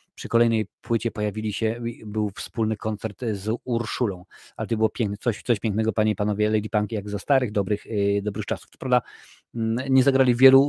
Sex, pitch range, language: male, 110-135 Hz, Polish